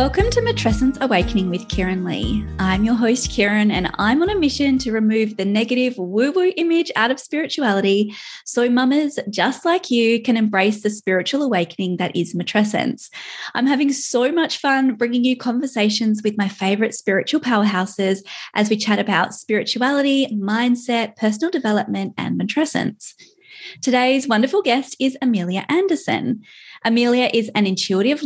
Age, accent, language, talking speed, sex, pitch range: 20-39, Australian, English, 155 wpm, female, 200-255 Hz